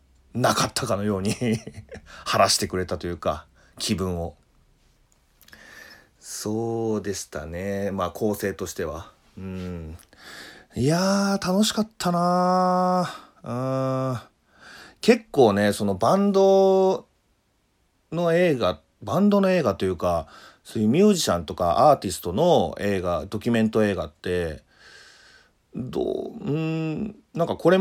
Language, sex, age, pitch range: Japanese, male, 40-59, 90-145 Hz